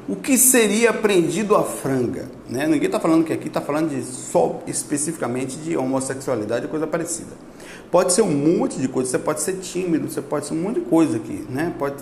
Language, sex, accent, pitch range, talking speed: Portuguese, male, Brazilian, 145-190 Hz, 210 wpm